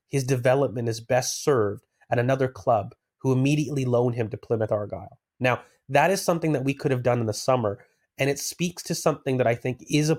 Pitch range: 115-140 Hz